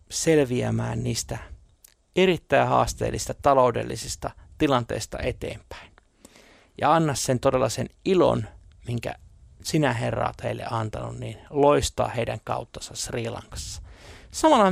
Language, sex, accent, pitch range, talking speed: Finnish, male, native, 95-135 Hz, 100 wpm